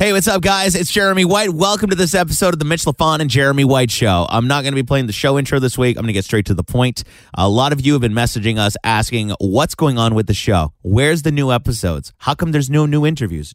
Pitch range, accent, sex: 100-140 Hz, American, male